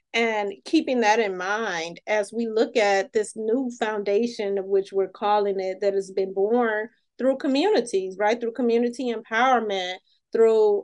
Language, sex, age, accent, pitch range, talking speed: English, female, 30-49, American, 210-270 Hz, 155 wpm